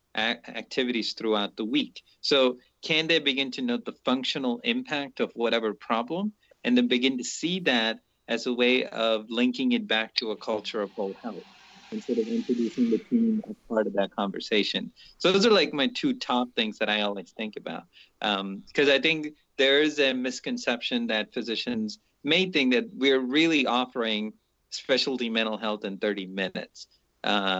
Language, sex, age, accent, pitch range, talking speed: English, male, 30-49, American, 105-150 Hz, 175 wpm